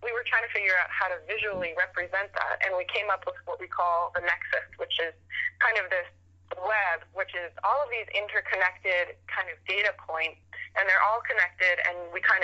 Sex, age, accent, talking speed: female, 20-39, American, 210 wpm